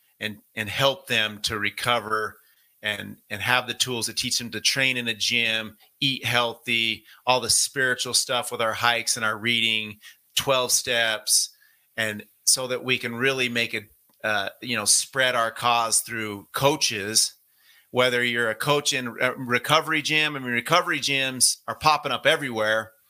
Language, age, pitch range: English, 30-49, 110-130 Hz